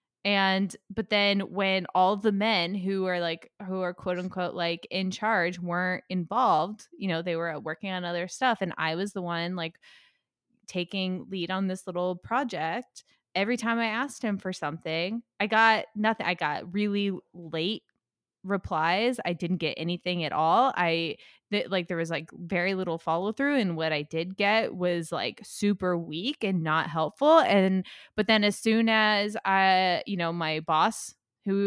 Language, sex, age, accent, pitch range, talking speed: English, female, 20-39, American, 175-215 Hz, 180 wpm